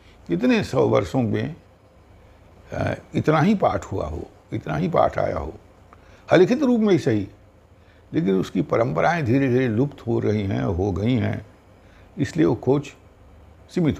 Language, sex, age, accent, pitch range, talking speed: Hindi, male, 60-79, native, 95-125 Hz, 150 wpm